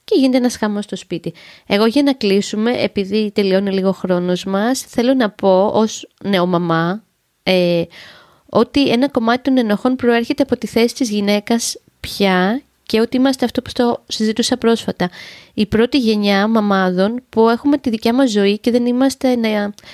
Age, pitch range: 20-39, 190-245 Hz